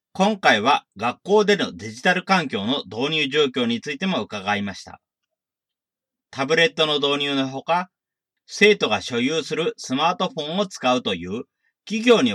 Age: 40-59